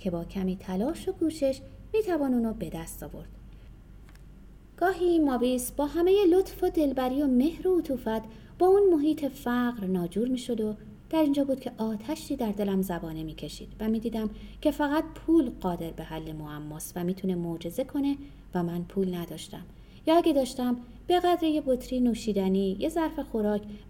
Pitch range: 195-295 Hz